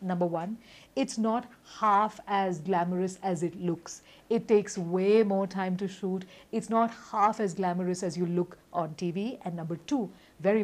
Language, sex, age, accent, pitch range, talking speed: English, female, 60-79, Indian, 185-235 Hz, 175 wpm